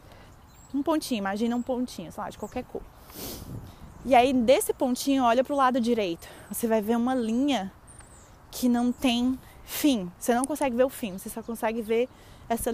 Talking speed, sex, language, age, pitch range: 185 wpm, female, Portuguese, 20-39, 210-255 Hz